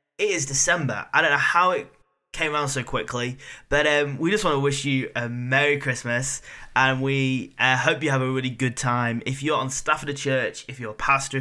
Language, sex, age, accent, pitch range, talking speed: English, male, 10-29, British, 115-135 Hz, 230 wpm